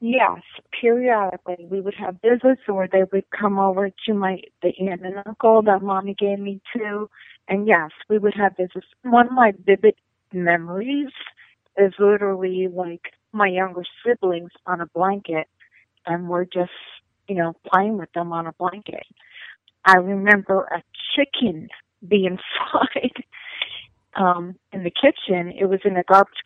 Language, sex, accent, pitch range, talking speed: English, female, American, 185-220 Hz, 155 wpm